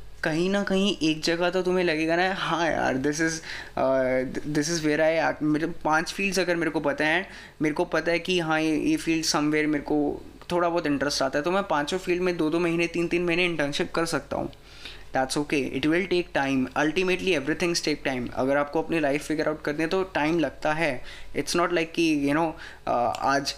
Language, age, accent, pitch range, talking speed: Hindi, 20-39, native, 140-170 Hz, 225 wpm